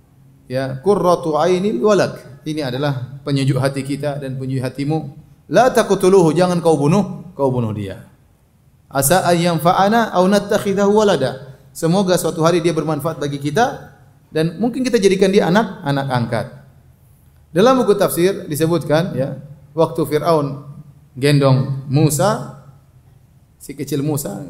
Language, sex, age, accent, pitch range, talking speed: Indonesian, male, 30-49, native, 140-190 Hz, 125 wpm